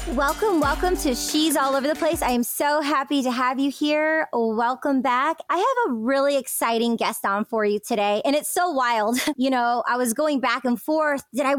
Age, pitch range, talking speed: 20-39, 230-290 Hz, 220 wpm